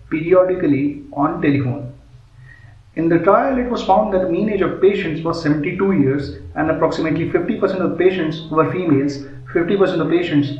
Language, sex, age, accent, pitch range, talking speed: English, male, 30-49, Indian, 145-175 Hz, 165 wpm